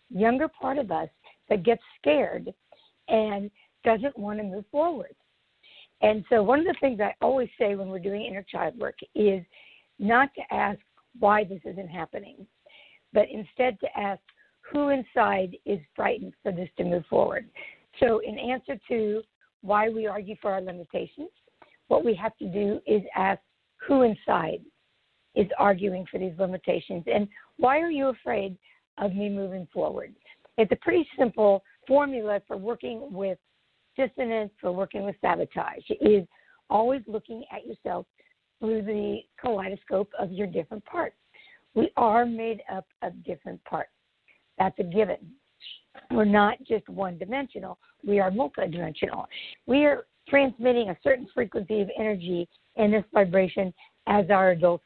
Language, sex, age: English, female, 60-79